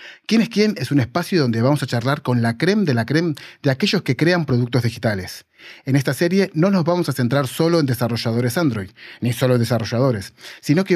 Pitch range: 110-145 Hz